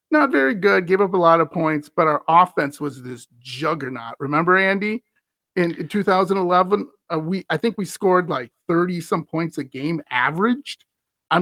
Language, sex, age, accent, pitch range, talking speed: English, male, 40-59, American, 150-220 Hz, 170 wpm